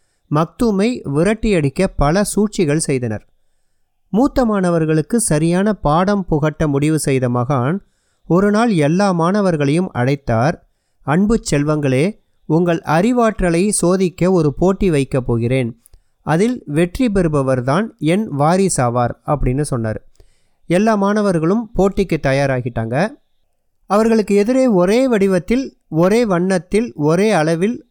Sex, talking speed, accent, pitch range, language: male, 100 wpm, native, 145-205 Hz, Tamil